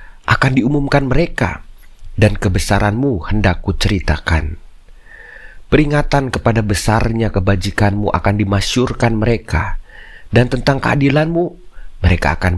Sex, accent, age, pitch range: male, native, 30-49, 90-120 Hz